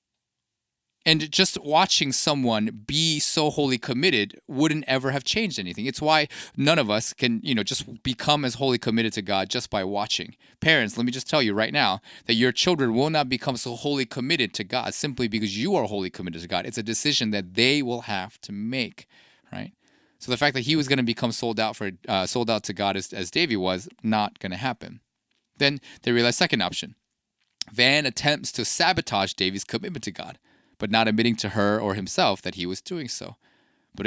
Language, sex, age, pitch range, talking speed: English, male, 30-49, 105-150 Hz, 205 wpm